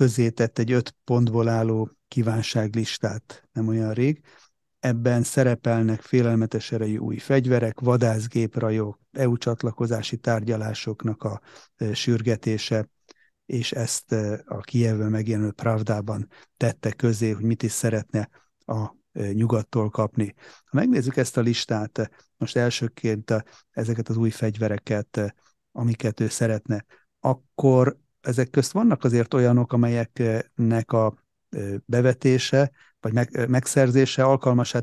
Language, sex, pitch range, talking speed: Hungarian, male, 110-125 Hz, 110 wpm